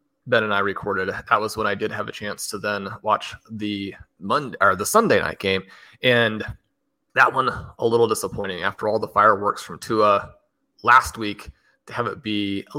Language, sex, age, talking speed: English, male, 30-49, 190 wpm